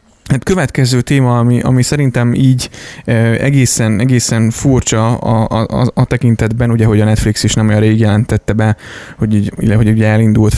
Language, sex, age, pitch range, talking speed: Hungarian, male, 20-39, 105-120 Hz, 180 wpm